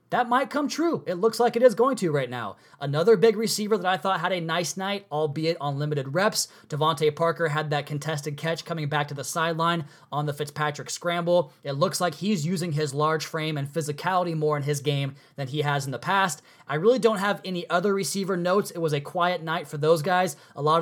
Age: 20-39